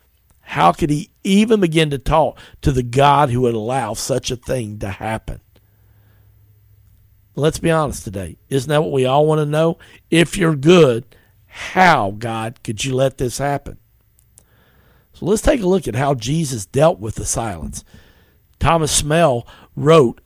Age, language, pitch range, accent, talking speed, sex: 50-69, English, 110-160 Hz, American, 165 wpm, male